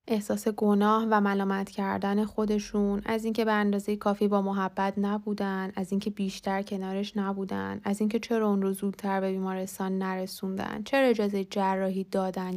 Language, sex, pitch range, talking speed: Persian, female, 190-205 Hz, 150 wpm